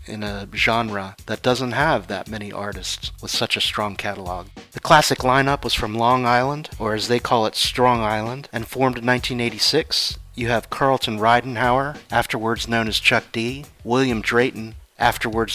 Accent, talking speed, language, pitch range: American, 170 wpm, English, 110-130 Hz